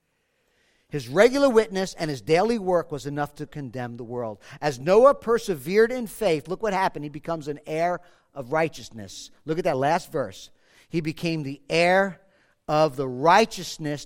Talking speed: 165 wpm